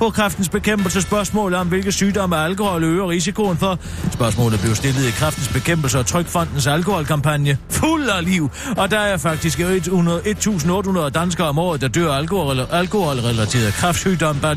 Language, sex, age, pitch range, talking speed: Danish, male, 40-59, 135-195 Hz, 160 wpm